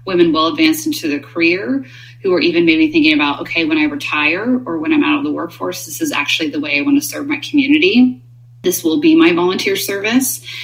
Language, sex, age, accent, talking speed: English, female, 30-49, American, 225 wpm